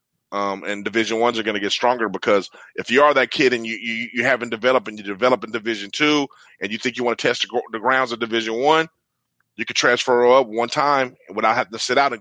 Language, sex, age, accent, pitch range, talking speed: English, male, 30-49, American, 110-135 Hz, 250 wpm